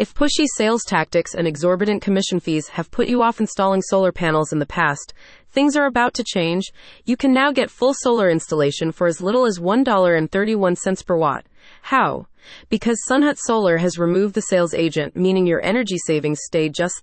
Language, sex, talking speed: English, female, 185 wpm